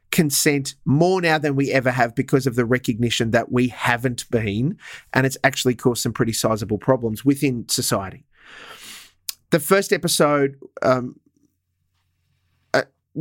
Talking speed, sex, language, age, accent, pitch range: 135 wpm, male, English, 30-49, Australian, 115-140 Hz